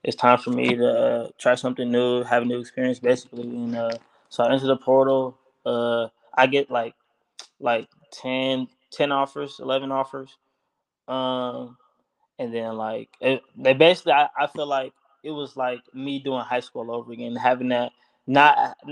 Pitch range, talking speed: 120-135 Hz, 170 wpm